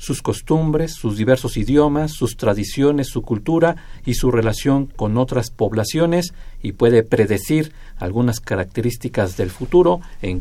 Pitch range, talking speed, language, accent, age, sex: 110-140 Hz, 135 wpm, Spanish, Mexican, 50-69, male